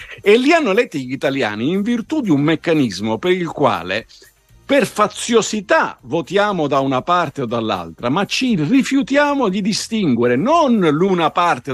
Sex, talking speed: male, 155 wpm